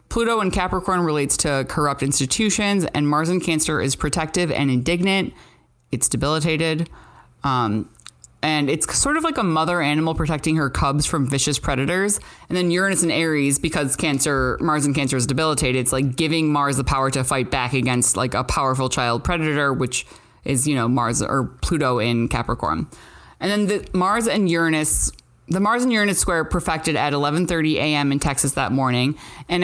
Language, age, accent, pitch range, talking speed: English, 20-39, American, 135-170 Hz, 175 wpm